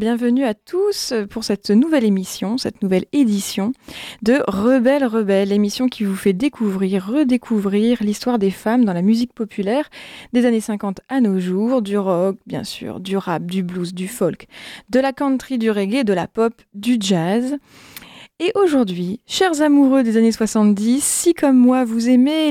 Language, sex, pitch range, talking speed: French, female, 200-250 Hz, 170 wpm